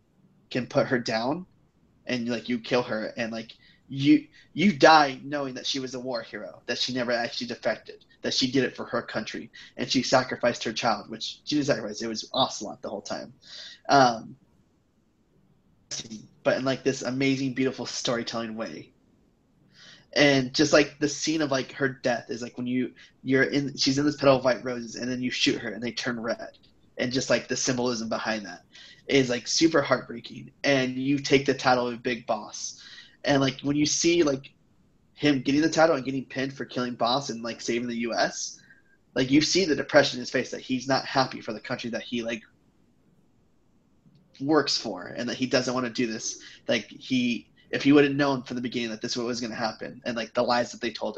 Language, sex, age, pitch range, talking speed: English, male, 20-39, 120-140 Hz, 210 wpm